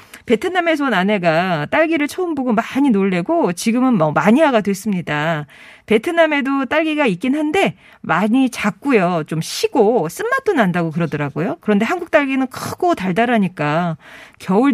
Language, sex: Korean, female